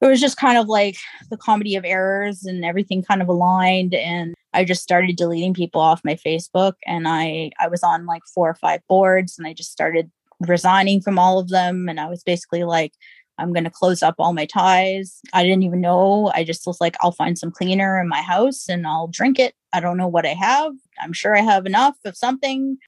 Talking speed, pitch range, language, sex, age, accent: 230 wpm, 170-195 Hz, English, female, 20-39, American